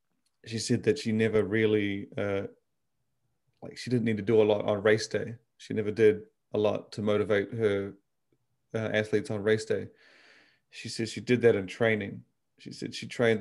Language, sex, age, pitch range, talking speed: English, male, 30-49, 105-115 Hz, 190 wpm